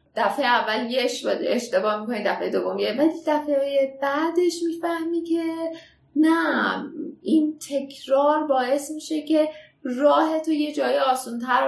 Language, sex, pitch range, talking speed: Persian, female, 225-295 Hz, 120 wpm